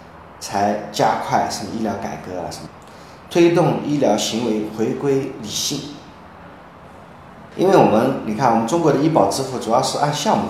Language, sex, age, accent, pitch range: Chinese, male, 20-39, native, 100-155 Hz